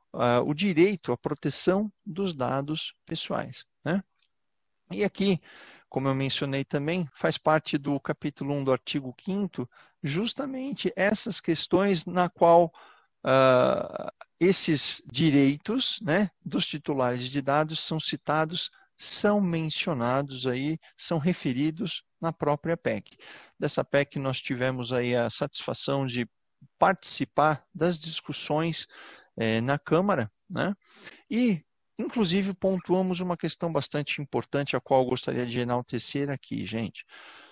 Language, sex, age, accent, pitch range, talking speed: Portuguese, male, 50-69, Brazilian, 130-170 Hz, 120 wpm